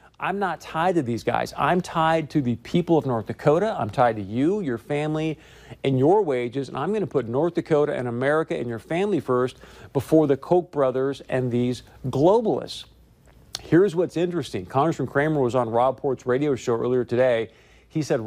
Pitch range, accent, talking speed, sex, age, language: 125-160 Hz, American, 190 wpm, male, 50-69, English